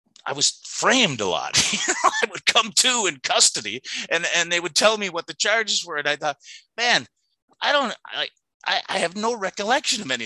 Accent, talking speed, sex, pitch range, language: American, 200 wpm, male, 110-150 Hz, English